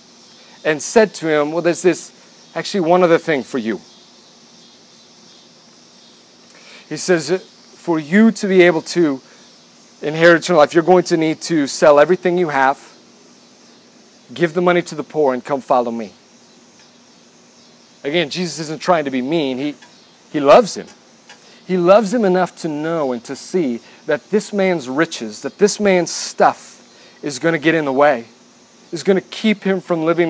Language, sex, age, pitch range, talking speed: English, male, 40-59, 140-180 Hz, 170 wpm